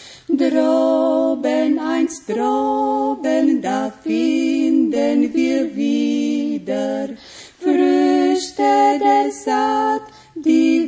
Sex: female